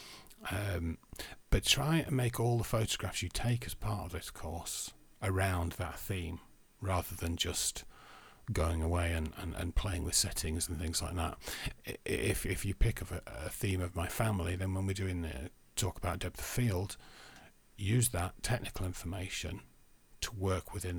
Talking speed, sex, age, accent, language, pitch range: 170 wpm, male, 40-59, British, English, 85-100 Hz